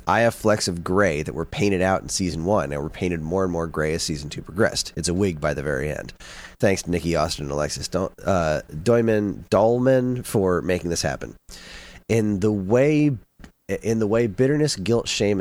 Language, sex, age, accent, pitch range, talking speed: English, male, 30-49, American, 85-105 Hz, 200 wpm